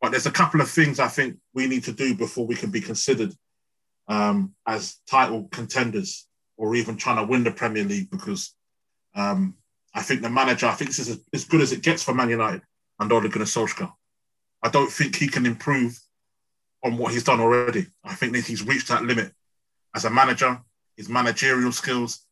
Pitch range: 115-150 Hz